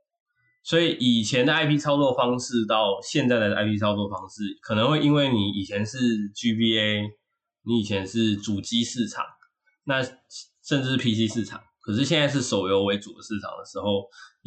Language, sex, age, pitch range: Chinese, male, 20-39, 105-150 Hz